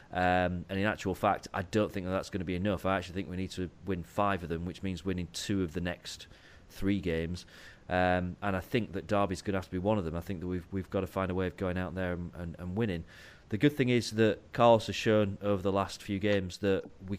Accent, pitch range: British, 90-110 Hz